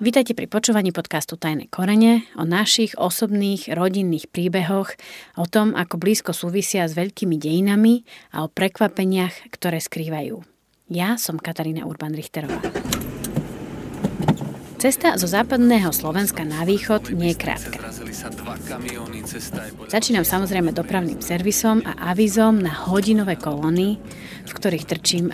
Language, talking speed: Slovak, 115 wpm